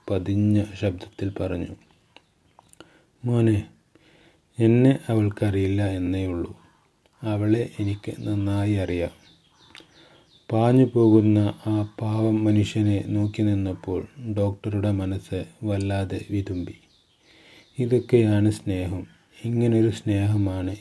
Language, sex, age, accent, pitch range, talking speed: Malayalam, male, 30-49, native, 95-110 Hz, 75 wpm